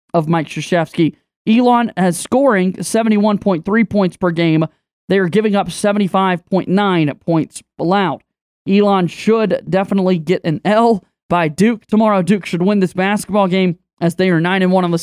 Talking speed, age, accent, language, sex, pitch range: 150 wpm, 20-39, American, English, male, 175-205 Hz